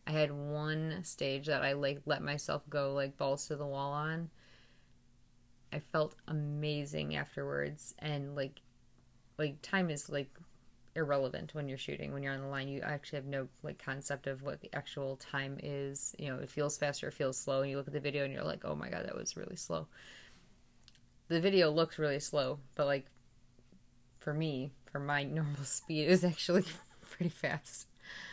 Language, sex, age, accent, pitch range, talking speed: English, female, 20-39, American, 135-150 Hz, 190 wpm